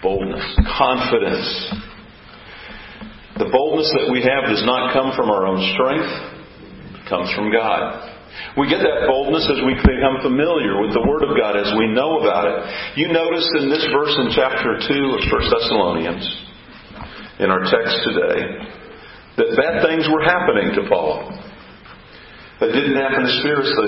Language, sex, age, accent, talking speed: English, male, 50-69, American, 155 wpm